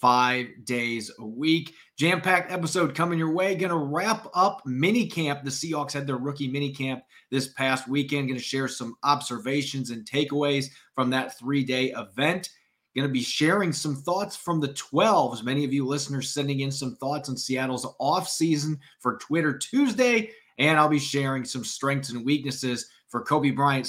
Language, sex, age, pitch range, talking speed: English, male, 30-49, 125-150 Hz, 170 wpm